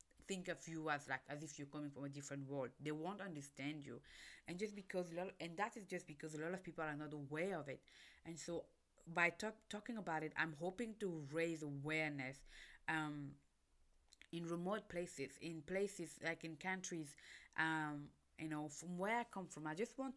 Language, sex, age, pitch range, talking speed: English, female, 20-39, 145-185 Hz, 200 wpm